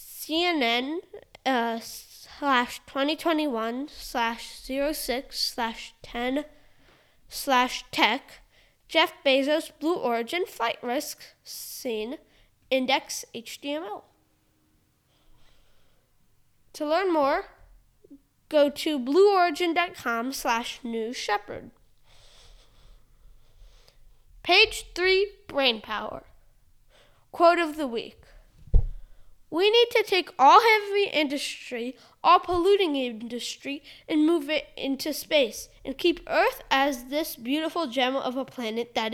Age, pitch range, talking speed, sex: 10-29, 255-340 Hz, 95 wpm, female